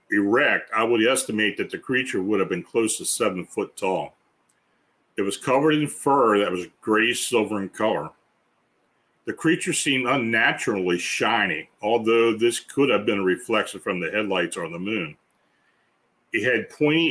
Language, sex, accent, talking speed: English, male, American, 165 wpm